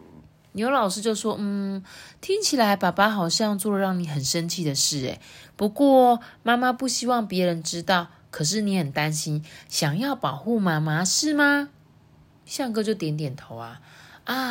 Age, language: 20-39, Chinese